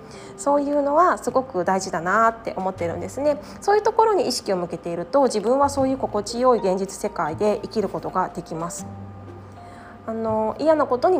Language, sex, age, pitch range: Japanese, female, 20-39, 190-290 Hz